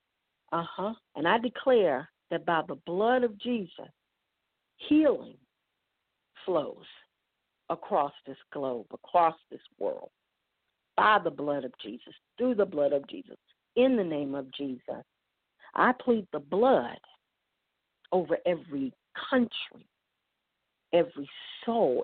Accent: American